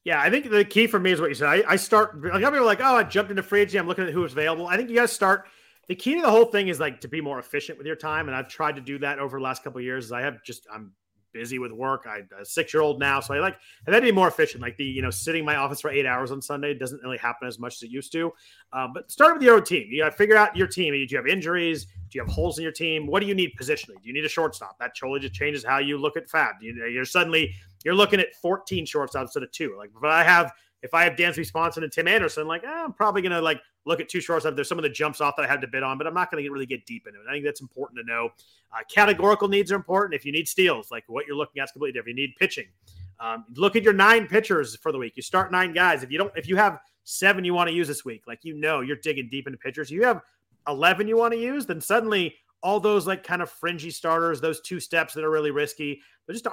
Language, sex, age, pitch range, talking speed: English, male, 30-49, 135-190 Hz, 310 wpm